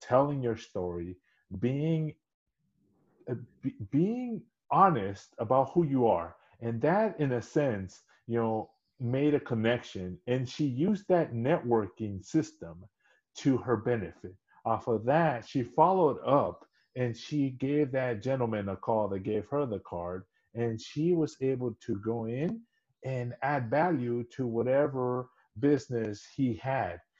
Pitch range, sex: 110-140 Hz, male